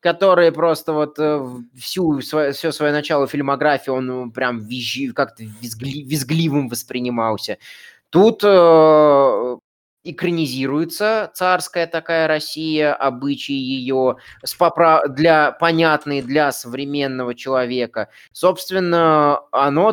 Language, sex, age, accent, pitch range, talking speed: Russian, male, 20-39, native, 125-160 Hz, 95 wpm